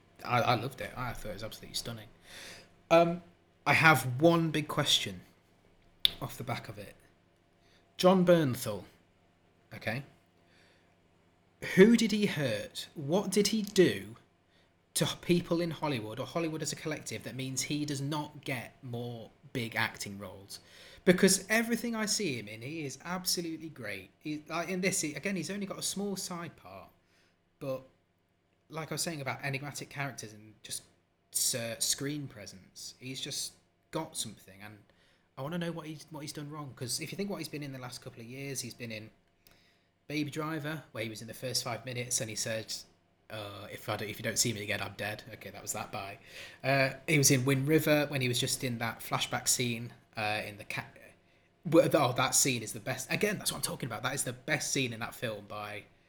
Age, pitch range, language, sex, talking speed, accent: 30-49, 105-150 Hz, English, male, 200 wpm, British